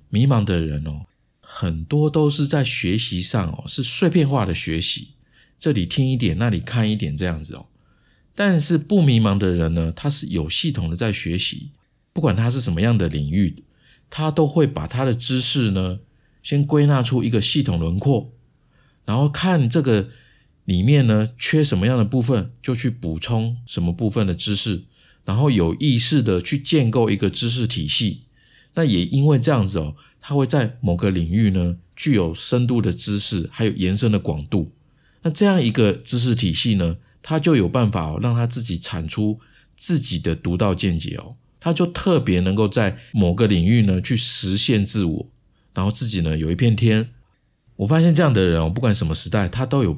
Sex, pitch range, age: male, 95-135 Hz, 50-69